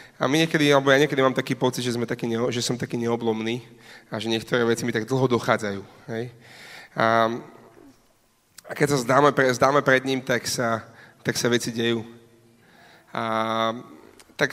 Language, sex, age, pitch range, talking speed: Slovak, male, 30-49, 120-135 Hz, 165 wpm